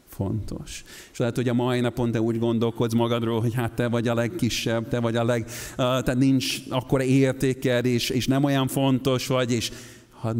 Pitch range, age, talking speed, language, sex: 115-140 Hz, 50-69, 190 wpm, Hungarian, male